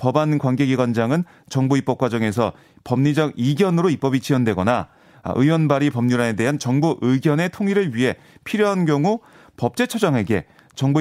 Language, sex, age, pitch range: Korean, male, 30-49, 130-170 Hz